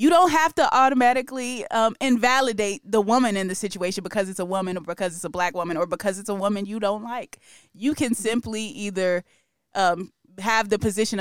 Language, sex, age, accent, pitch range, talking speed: English, female, 20-39, American, 175-220 Hz, 205 wpm